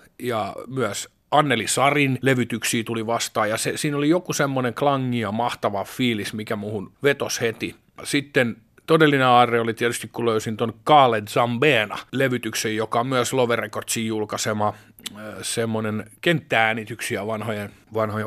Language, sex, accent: Finnish, male, native